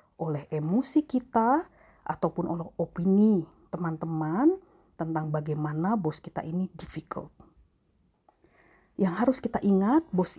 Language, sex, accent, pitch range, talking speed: Indonesian, female, native, 165-225 Hz, 105 wpm